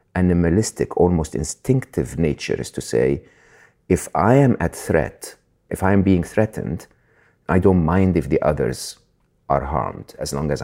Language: English